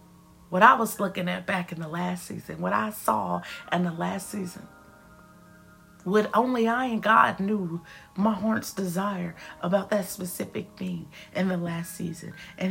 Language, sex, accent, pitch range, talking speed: English, female, American, 180-230 Hz, 165 wpm